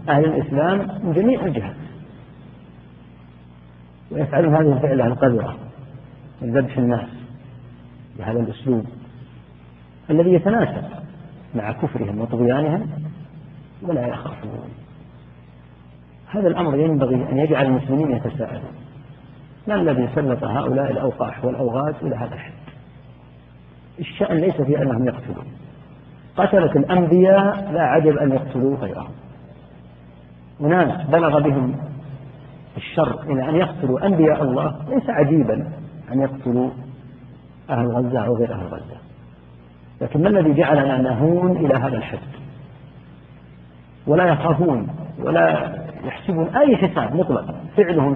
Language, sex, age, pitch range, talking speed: Arabic, male, 50-69, 120-155 Hz, 105 wpm